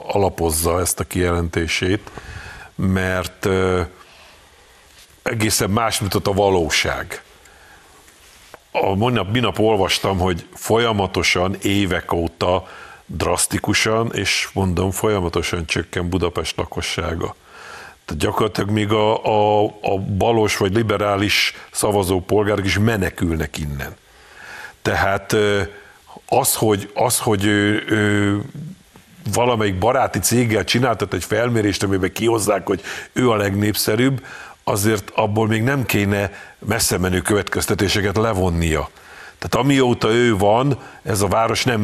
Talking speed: 105 wpm